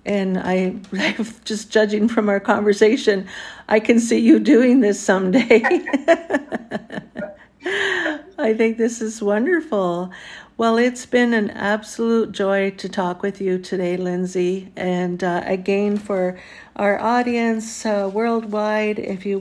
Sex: female